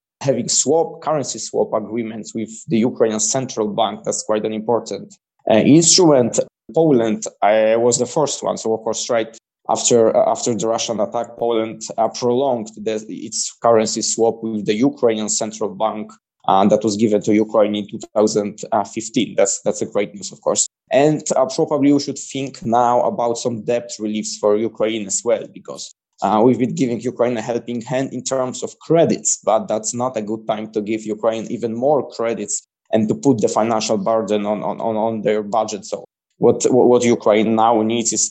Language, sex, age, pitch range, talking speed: Polish, male, 20-39, 110-120 Hz, 185 wpm